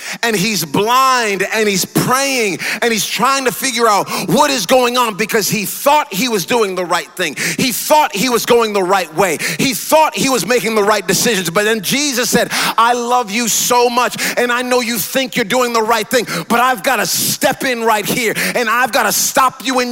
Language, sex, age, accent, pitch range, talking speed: English, male, 30-49, American, 225-265 Hz, 225 wpm